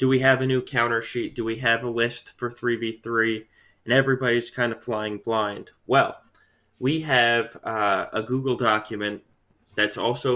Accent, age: American, 20-39